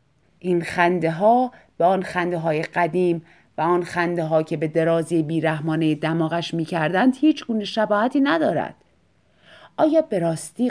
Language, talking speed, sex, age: Persian, 135 wpm, female, 30-49